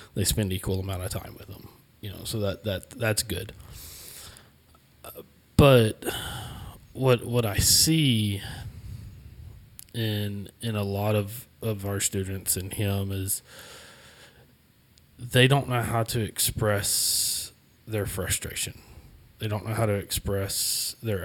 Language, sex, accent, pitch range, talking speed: English, male, American, 100-115 Hz, 135 wpm